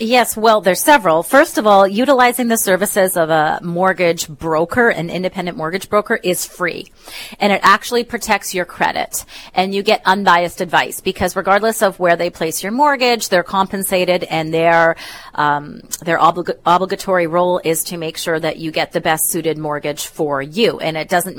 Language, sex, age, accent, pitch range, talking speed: English, female, 30-49, American, 165-220 Hz, 175 wpm